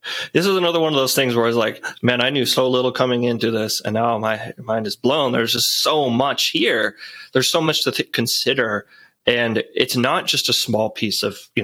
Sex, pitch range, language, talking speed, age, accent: male, 115-140 Hz, English, 225 wpm, 20-39, American